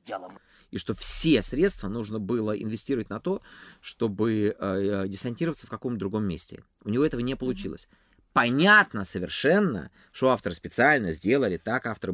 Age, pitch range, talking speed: 30-49, 100-170 Hz, 150 wpm